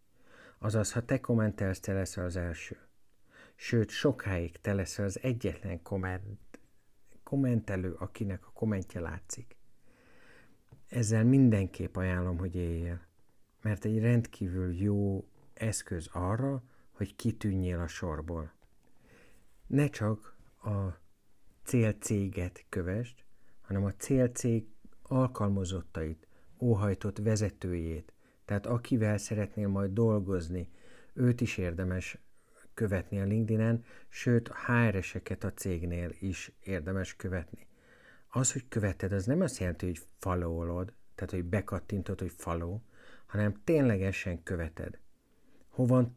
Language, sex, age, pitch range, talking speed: Hungarian, male, 60-79, 95-115 Hz, 110 wpm